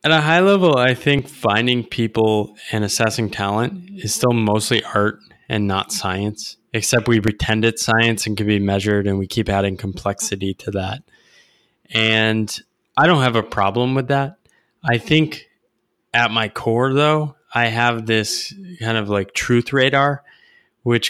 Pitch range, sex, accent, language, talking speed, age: 105-125 Hz, male, American, English, 160 wpm, 20-39